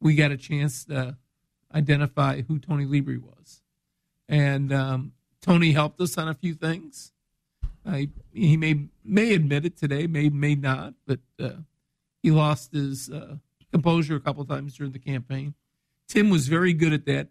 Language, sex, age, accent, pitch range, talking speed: English, male, 50-69, American, 140-155 Hz, 170 wpm